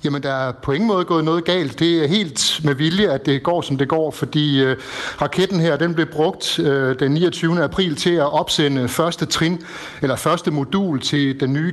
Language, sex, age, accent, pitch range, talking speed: Danish, male, 60-79, native, 140-170 Hz, 215 wpm